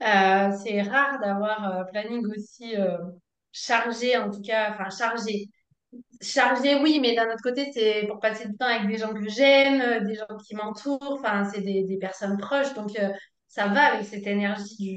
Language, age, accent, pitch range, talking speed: French, 20-39, French, 200-245 Hz, 195 wpm